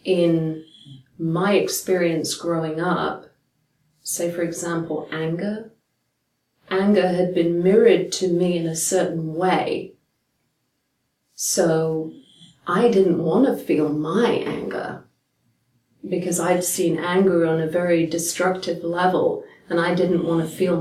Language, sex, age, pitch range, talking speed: English, female, 30-49, 160-185 Hz, 120 wpm